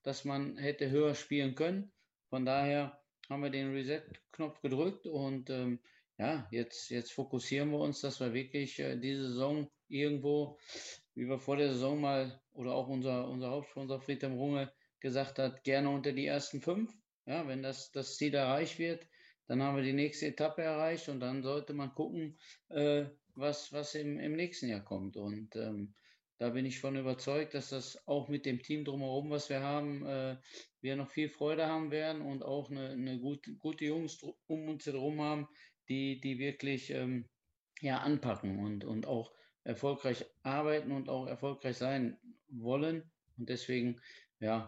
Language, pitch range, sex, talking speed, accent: German, 130-150 Hz, male, 170 wpm, German